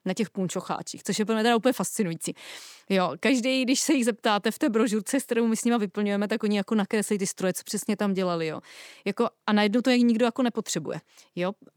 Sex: female